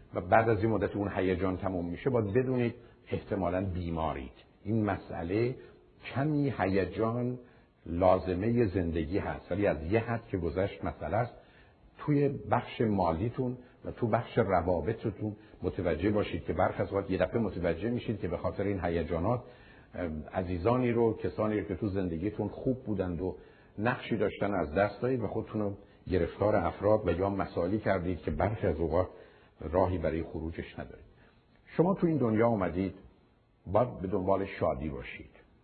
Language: Persian